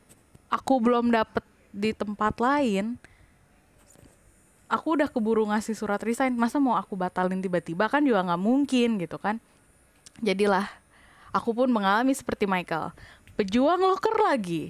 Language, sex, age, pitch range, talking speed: Indonesian, female, 10-29, 185-245 Hz, 130 wpm